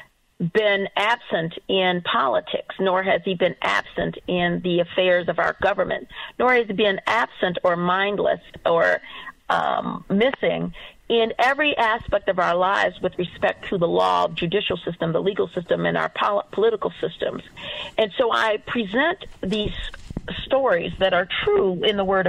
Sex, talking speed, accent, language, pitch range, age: female, 155 wpm, American, English, 180-220 Hz, 50-69